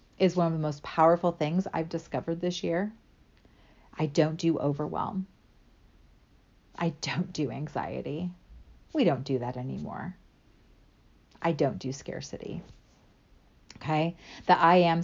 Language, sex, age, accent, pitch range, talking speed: English, female, 40-59, American, 140-180 Hz, 130 wpm